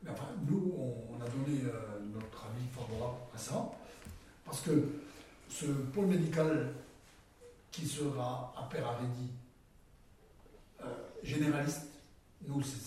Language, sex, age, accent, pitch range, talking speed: French, male, 60-79, French, 120-155 Hz, 120 wpm